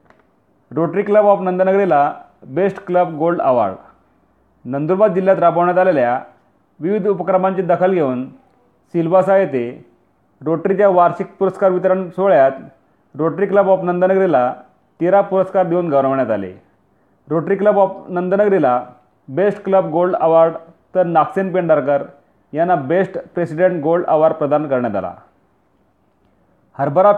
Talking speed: 115 wpm